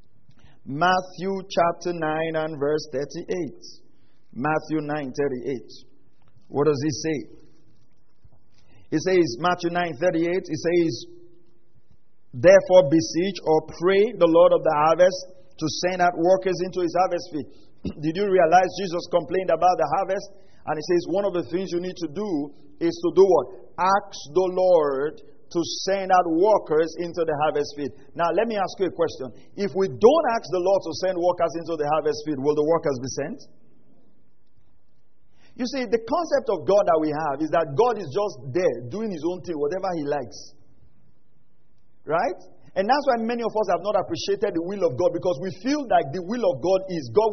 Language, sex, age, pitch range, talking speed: English, male, 50-69, 160-200 Hz, 180 wpm